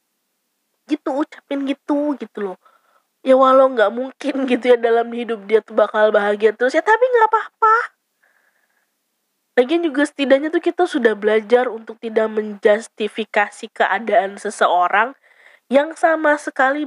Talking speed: 130 wpm